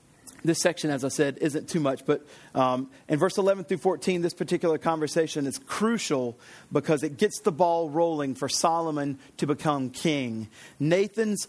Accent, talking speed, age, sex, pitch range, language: American, 165 wpm, 40-59, male, 140-185 Hz, English